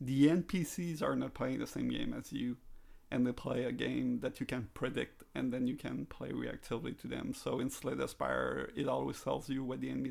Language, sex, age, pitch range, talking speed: English, male, 30-49, 125-155 Hz, 225 wpm